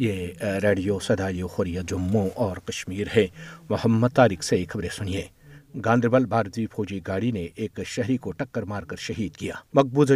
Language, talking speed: Urdu, 160 wpm